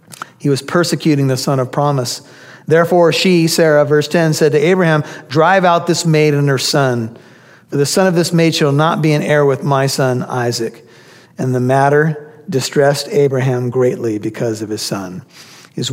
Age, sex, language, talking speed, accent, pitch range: 50-69, male, English, 180 wpm, American, 140-175 Hz